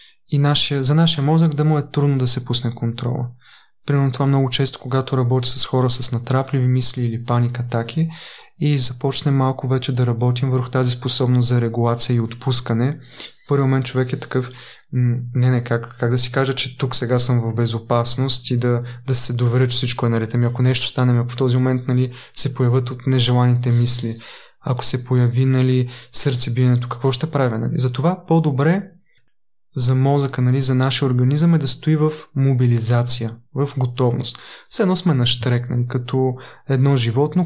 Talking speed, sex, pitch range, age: 185 wpm, male, 125-140 Hz, 20-39